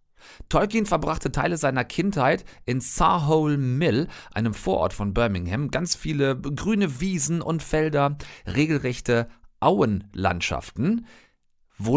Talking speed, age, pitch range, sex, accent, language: 105 wpm, 40-59, 120-150 Hz, male, German, German